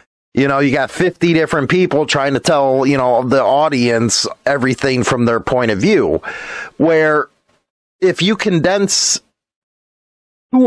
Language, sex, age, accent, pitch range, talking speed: English, male, 30-49, American, 120-155 Hz, 140 wpm